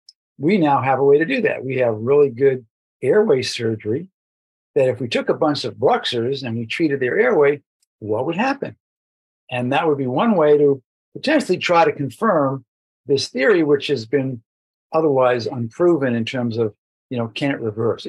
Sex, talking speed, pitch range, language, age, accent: male, 185 wpm, 115-145 Hz, English, 50-69, American